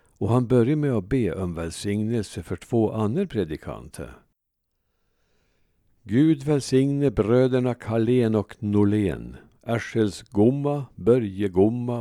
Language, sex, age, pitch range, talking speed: Swedish, male, 60-79, 95-125 Hz, 110 wpm